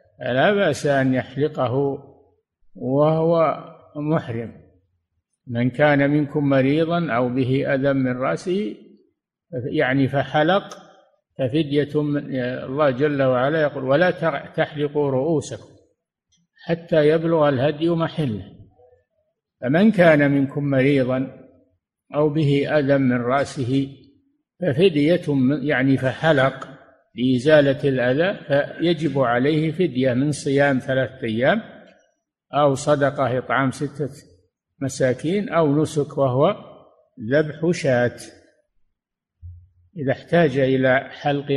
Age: 60-79